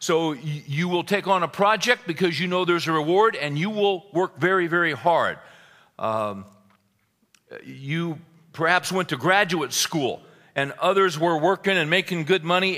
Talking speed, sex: 165 wpm, male